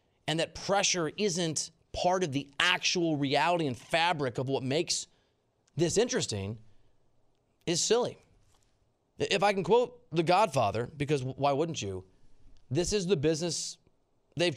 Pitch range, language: 125-180 Hz, English